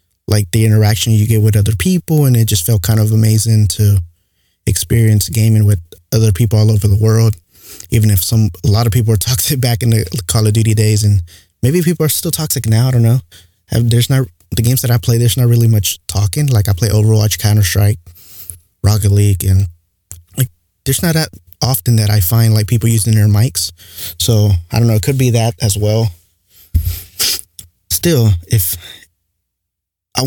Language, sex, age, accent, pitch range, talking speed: English, male, 20-39, American, 95-115 Hz, 190 wpm